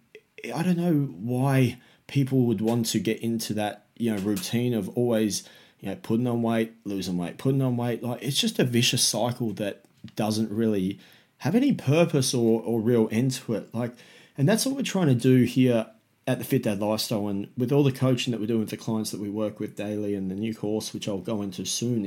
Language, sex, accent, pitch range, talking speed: English, male, Australian, 105-135 Hz, 225 wpm